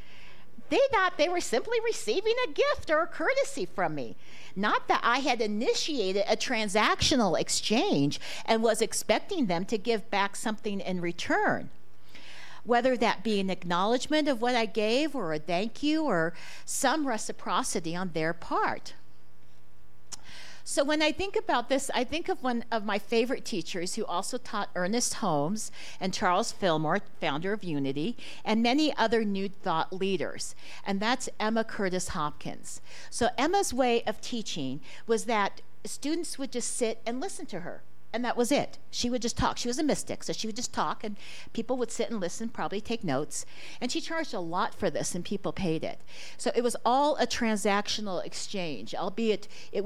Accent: American